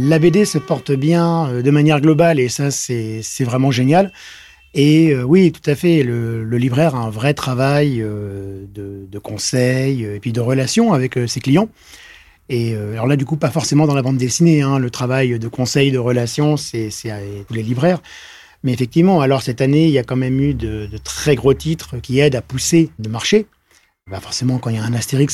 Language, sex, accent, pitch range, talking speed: French, male, French, 115-150 Hz, 225 wpm